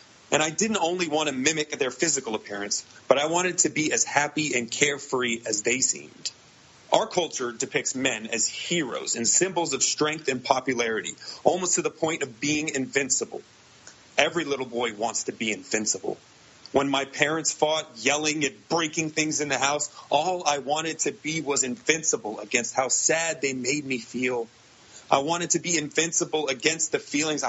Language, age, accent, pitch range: English, 30-49, American, 130-165 Hz